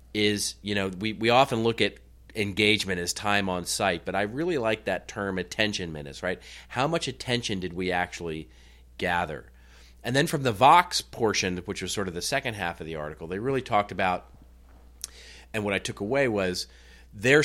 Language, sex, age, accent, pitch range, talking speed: English, male, 40-59, American, 90-115 Hz, 195 wpm